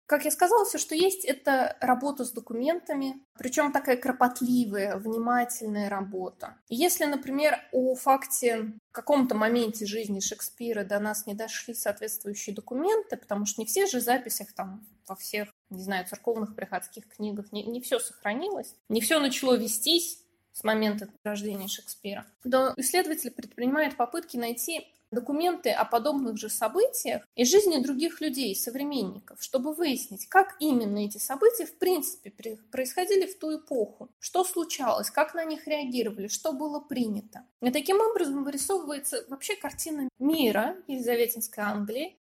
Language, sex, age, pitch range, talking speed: Russian, female, 20-39, 220-305 Hz, 145 wpm